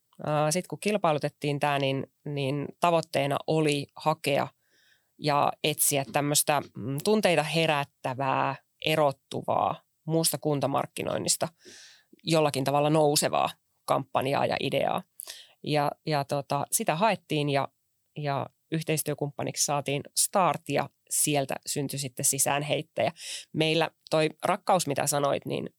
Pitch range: 140-155 Hz